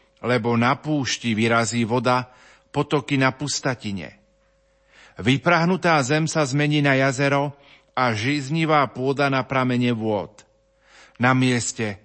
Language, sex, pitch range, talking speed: Slovak, male, 115-145 Hz, 110 wpm